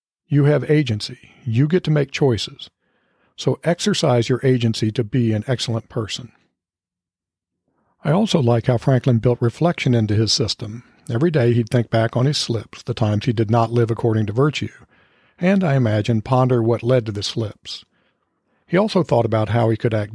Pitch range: 115-140 Hz